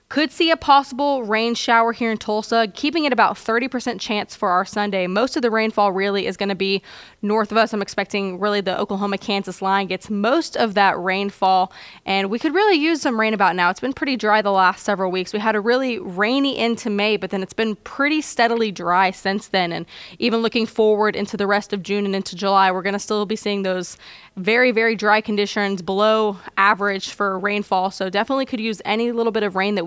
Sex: female